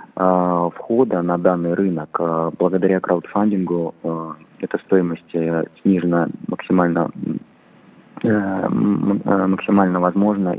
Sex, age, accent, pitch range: male, 20-39, native, 85-100 Hz